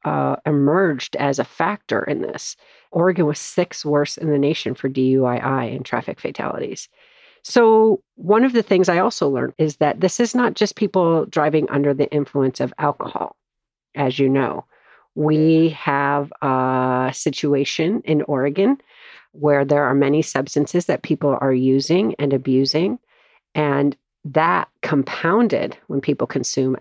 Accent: American